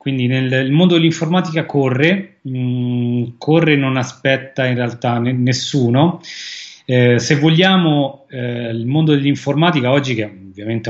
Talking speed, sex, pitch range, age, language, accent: 130 wpm, male, 115-140 Hz, 30-49, Italian, native